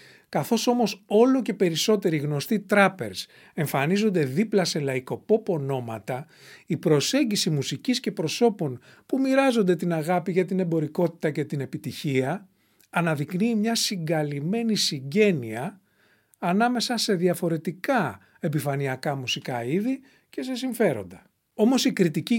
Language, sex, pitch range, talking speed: English, male, 145-210 Hz, 115 wpm